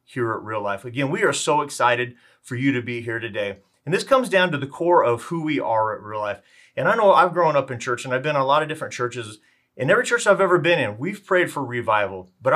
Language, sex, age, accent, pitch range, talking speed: English, male, 30-49, American, 120-150 Hz, 275 wpm